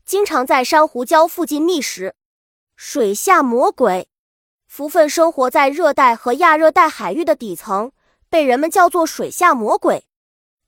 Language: Chinese